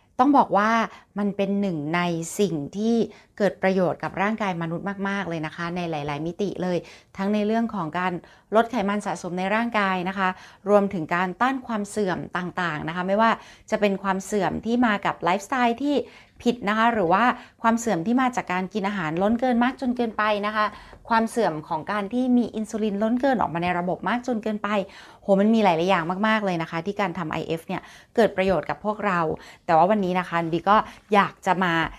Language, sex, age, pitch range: Thai, female, 30-49, 175-225 Hz